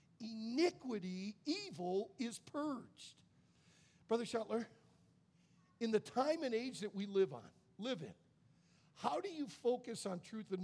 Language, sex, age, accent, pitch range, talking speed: English, male, 50-69, American, 190-285 Hz, 135 wpm